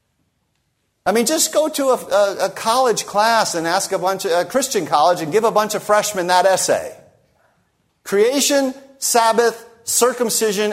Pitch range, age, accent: 135-210 Hz, 50-69, American